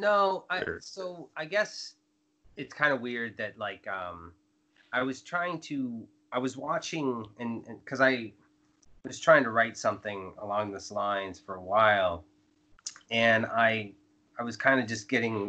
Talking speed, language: 165 wpm, English